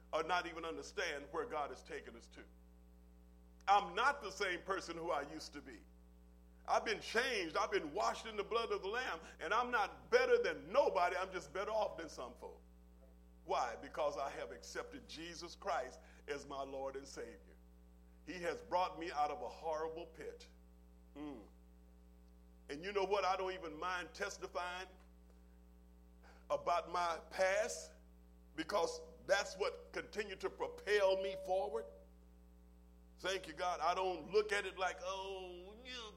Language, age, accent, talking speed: English, 50-69, American, 165 wpm